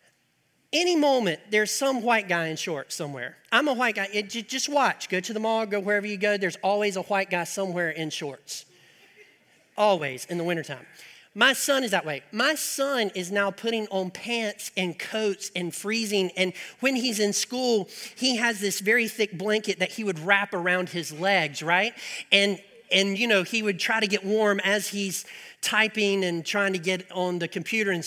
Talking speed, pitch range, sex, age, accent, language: 195 wpm, 180-220 Hz, male, 40-59, American, English